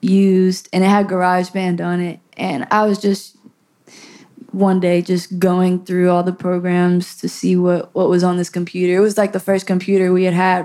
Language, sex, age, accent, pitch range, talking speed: English, female, 20-39, American, 180-215 Hz, 205 wpm